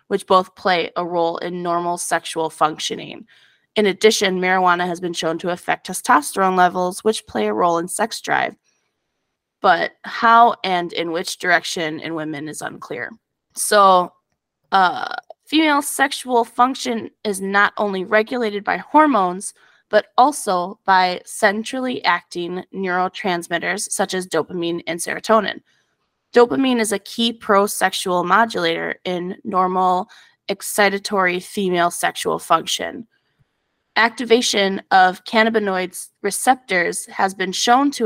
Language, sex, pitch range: English, female, 175-220 Hz